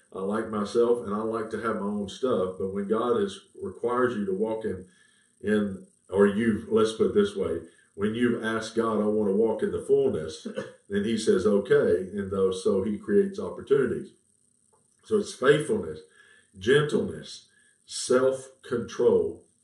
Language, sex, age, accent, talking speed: English, male, 50-69, American, 165 wpm